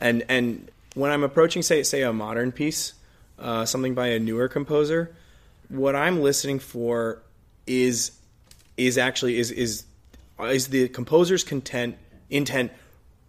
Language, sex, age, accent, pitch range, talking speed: English, male, 20-39, American, 110-130 Hz, 135 wpm